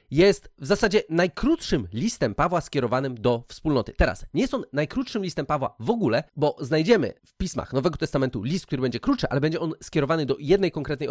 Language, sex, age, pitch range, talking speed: Polish, male, 30-49, 130-200 Hz, 190 wpm